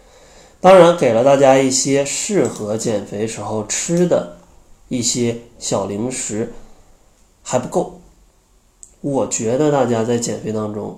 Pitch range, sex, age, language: 110-145 Hz, male, 20-39, Chinese